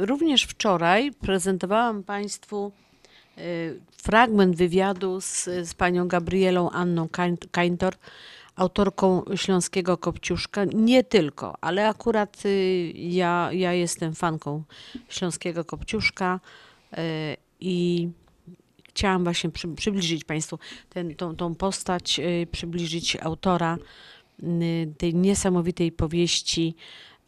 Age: 50-69